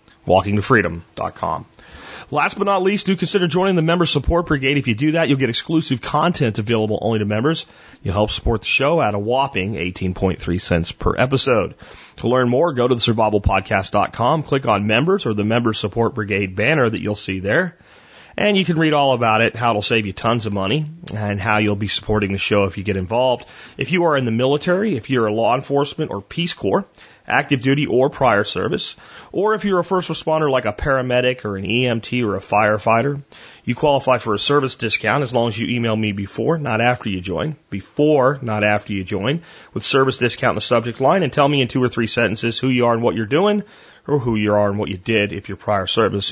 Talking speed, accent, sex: 220 wpm, American, male